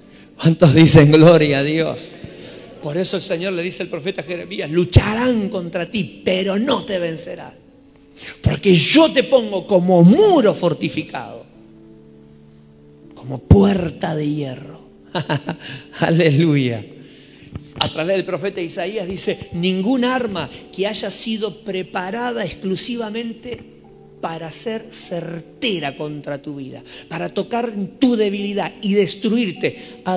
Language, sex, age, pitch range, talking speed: Spanish, male, 50-69, 155-205 Hz, 115 wpm